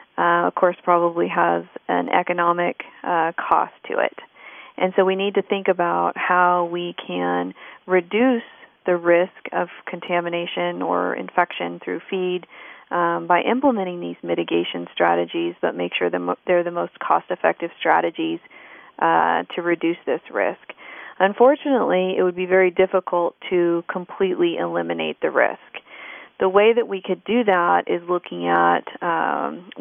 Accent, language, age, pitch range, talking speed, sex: American, English, 40-59, 165-190 Hz, 145 wpm, female